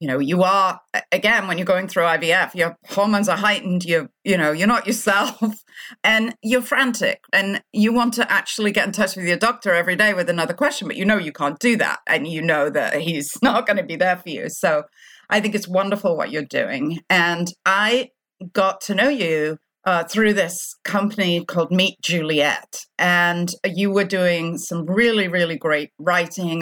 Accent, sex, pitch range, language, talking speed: British, female, 170-215 Hz, English, 200 wpm